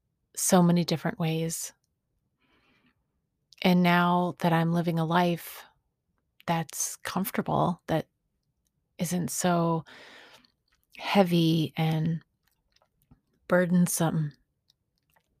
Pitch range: 165-180 Hz